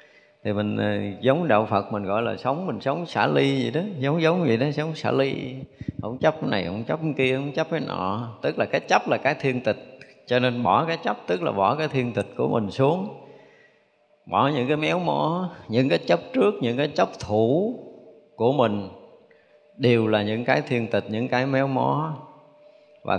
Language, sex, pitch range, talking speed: Vietnamese, male, 105-150 Hz, 210 wpm